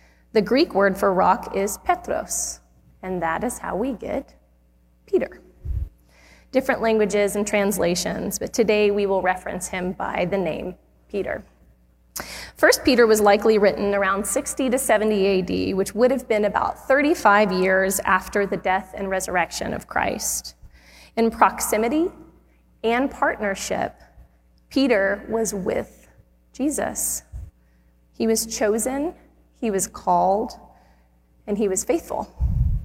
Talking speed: 130 wpm